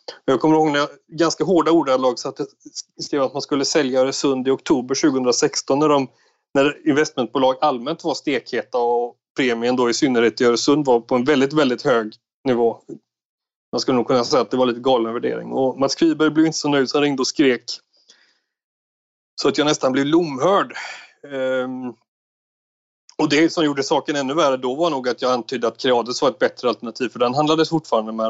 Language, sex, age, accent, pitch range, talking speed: Swedish, male, 30-49, native, 125-150 Hz, 195 wpm